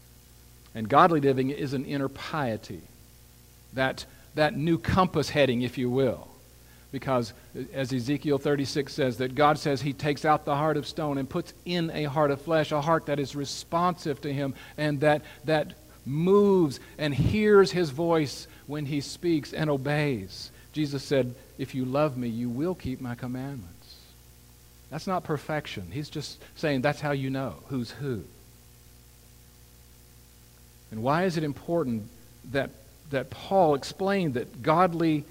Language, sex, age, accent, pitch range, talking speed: English, male, 50-69, American, 120-160 Hz, 155 wpm